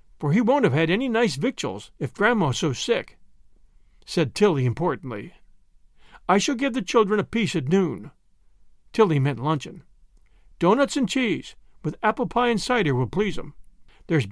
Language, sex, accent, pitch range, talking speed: English, male, American, 150-235 Hz, 165 wpm